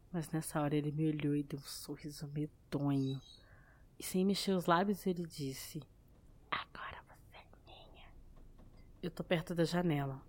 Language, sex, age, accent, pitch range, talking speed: Portuguese, female, 20-39, Brazilian, 155-185 Hz, 155 wpm